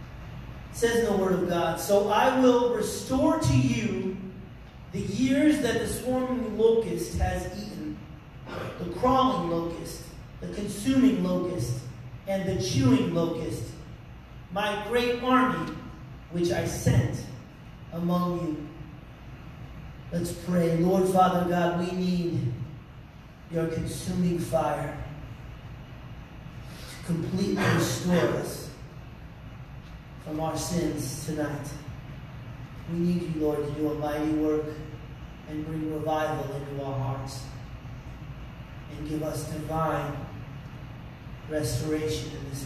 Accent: American